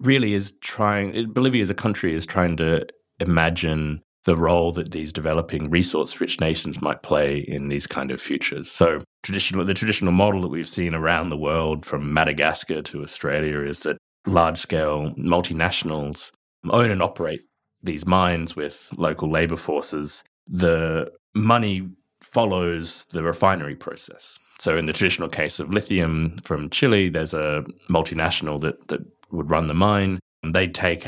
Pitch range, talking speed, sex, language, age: 75-95 Hz, 155 wpm, male, English, 30-49